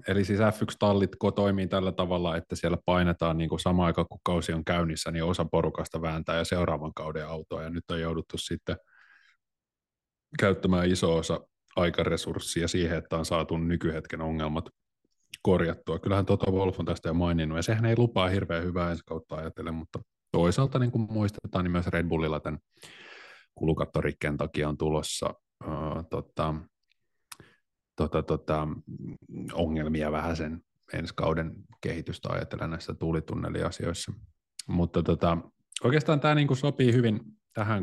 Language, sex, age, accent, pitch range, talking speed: Finnish, male, 30-49, native, 80-95 Hz, 145 wpm